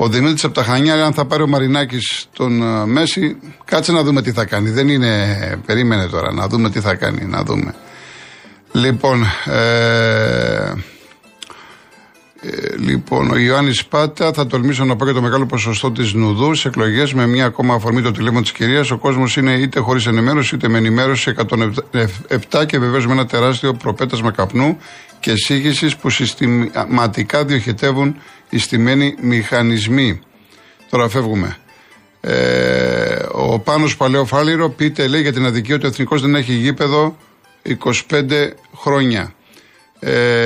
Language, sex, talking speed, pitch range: Greek, male, 150 wpm, 115-145 Hz